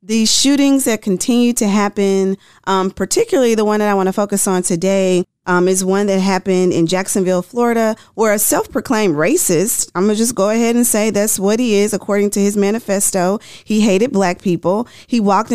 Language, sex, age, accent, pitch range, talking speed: English, female, 40-59, American, 195-240 Hz, 195 wpm